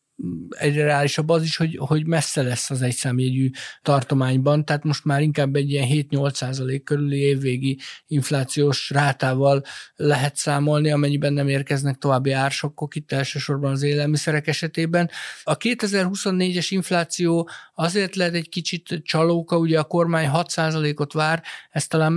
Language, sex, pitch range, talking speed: Hungarian, male, 140-155 Hz, 140 wpm